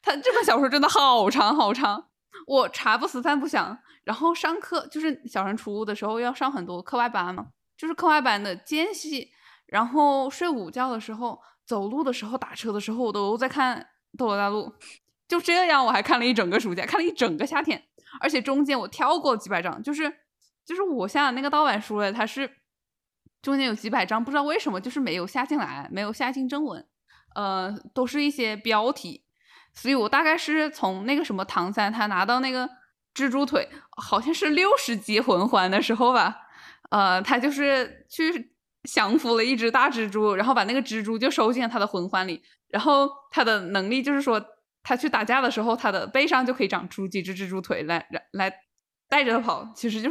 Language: Chinese